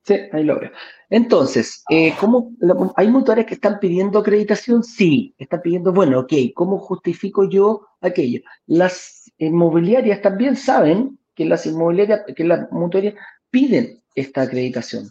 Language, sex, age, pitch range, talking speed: Spanish, male, 40-59, 150-210 Hz, 130 wpm